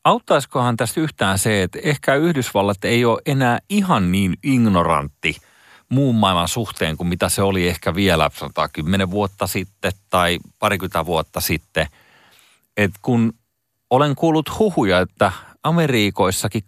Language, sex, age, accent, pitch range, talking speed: Finnish, male, 30-49, native, 85-120 Hz, 125 wpm